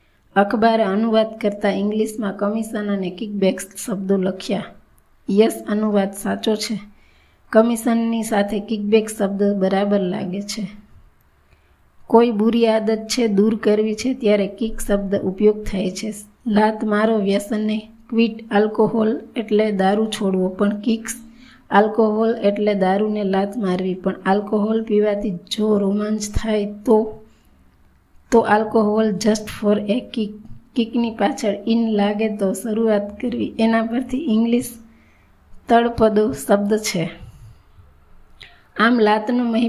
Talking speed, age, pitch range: 55 wpm, 20-39, 205-225 Hz